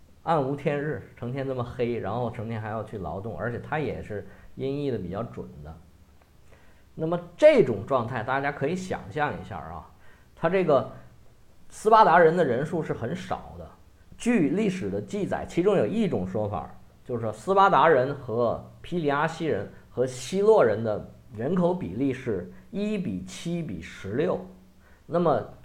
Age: 50-69